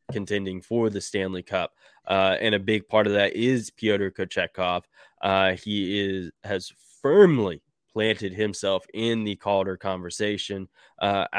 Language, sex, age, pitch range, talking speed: English, male, 20-39, 95-110 Hz, 135 wpm